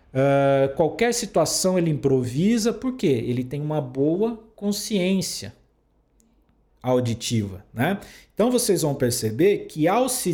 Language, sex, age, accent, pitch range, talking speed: Portuguese, male, 50-69, Brazilian, 135-190 Hz, 115 wpm